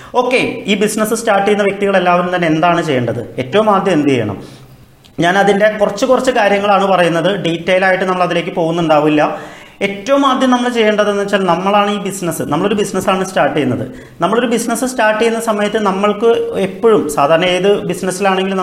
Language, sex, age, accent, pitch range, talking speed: Malayalam, male, 40-59, native, 175-220 Hz, 150 wpm